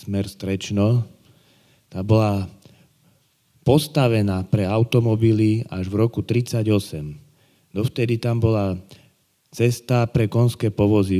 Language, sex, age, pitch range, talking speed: Slovak, male, 30-49, 100-115 Hz, 95 wpm